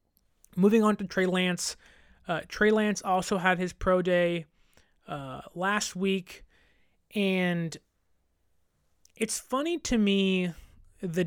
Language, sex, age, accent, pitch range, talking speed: English, male, 20-39, American, 170-200 Hz, 115 wpm